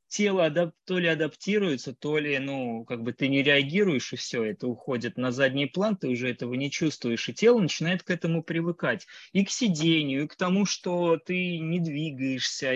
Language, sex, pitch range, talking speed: Russian, male, 125-170 Hz, 190 wpm